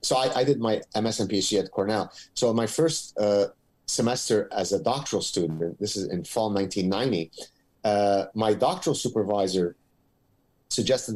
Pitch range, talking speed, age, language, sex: 95-120 Hz, 155 wpm, 30-49, English, male